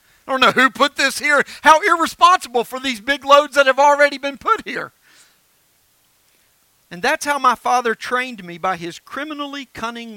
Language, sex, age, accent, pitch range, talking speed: English, male, 50-69, American, 220-275 Hz, 175 wpm